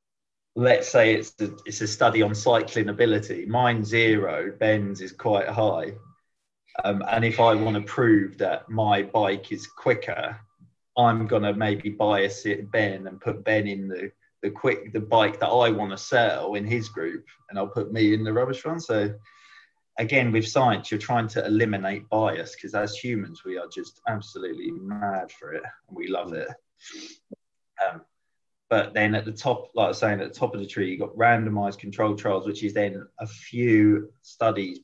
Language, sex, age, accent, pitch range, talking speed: English, male, 30-49, British, 100-120 Hz, 190 wpm